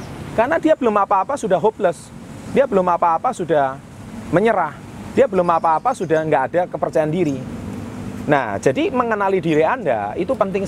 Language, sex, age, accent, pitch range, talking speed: Indonesian, male, 30-49, native, 150-235 Hz, 145 wpm